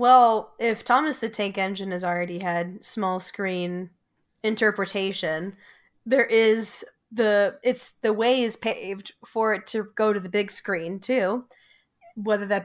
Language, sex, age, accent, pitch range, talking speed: English, female, 20-39, American, 200-250 Hz, 145 wpm